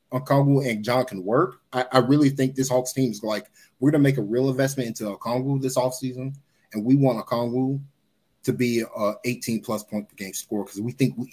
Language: English